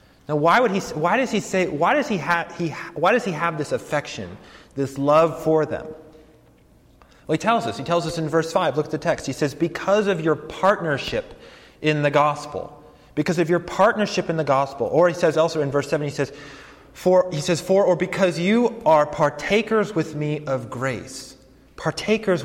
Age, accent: 30-49, American